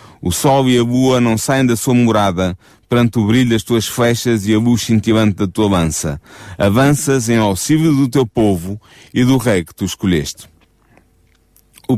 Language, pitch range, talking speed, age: Portuguese, 105-130 Hz, 180 wpm, 30-49